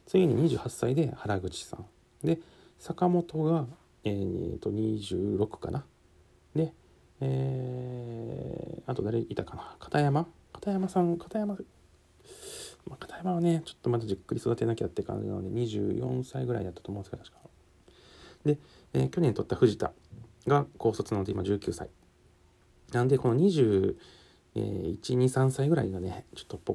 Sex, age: male, 40-59